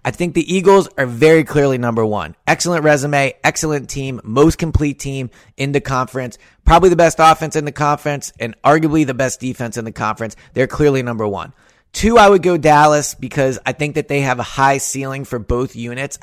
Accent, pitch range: American, 125-150 Hz